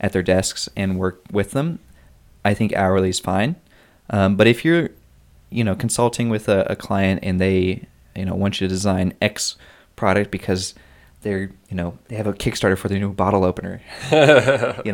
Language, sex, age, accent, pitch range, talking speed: English, male, 20-39, American, 90-110 Hz, 190 wpm